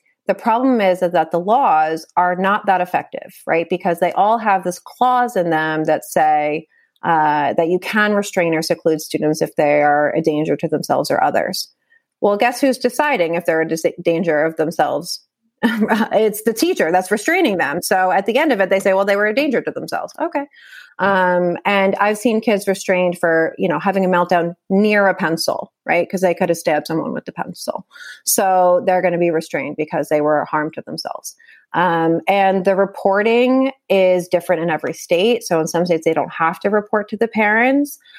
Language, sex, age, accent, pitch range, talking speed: English, female, 30-49, American, 165-210 Hz, 205 wpm